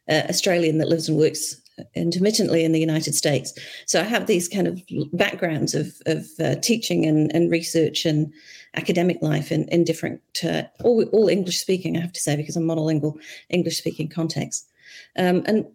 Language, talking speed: English, 185 wpm